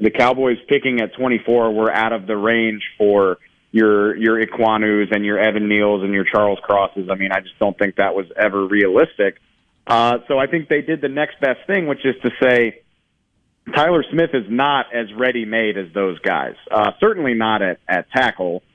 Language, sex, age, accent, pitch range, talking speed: English, male, 30-49, American, 105-125 Hz, 200 wpm